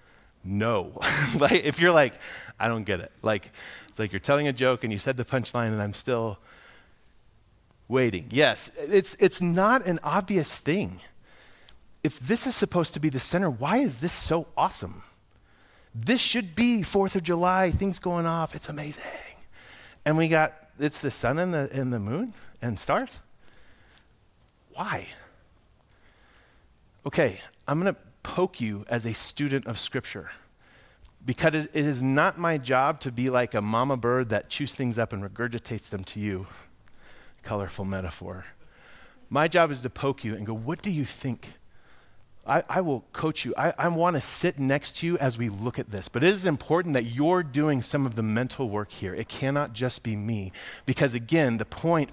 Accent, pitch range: American, 110-160 Hz